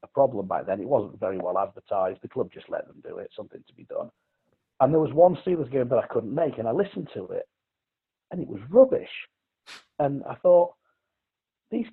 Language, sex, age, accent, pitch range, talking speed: English, male, 40-59, British, 130-205 Hz, 215 wpm